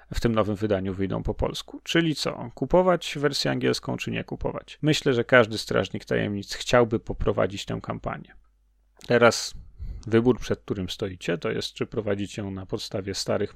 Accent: native